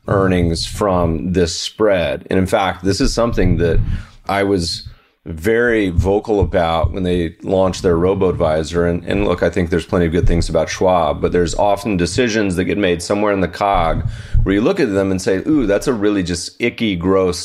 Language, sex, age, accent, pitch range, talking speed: English, male, 30-49, American, 85-105 Hz, 200 wpm